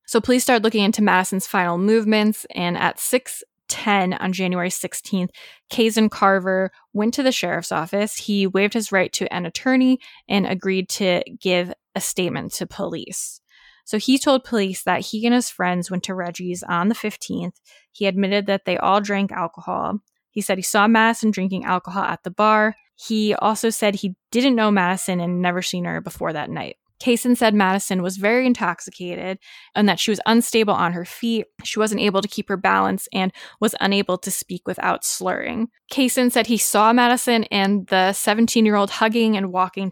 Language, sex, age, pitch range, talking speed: English, female, 10-29, 185-220 Hz, 180 wpm